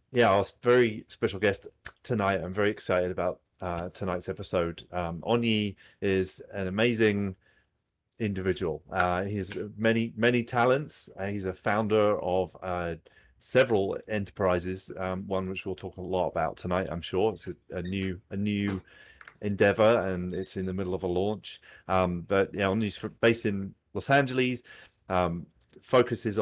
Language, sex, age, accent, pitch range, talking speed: English, male, 30-49, British, 90-105 Hz, 155 wpm